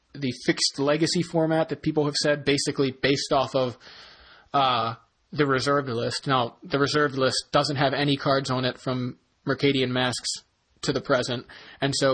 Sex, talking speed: male, 170 wpm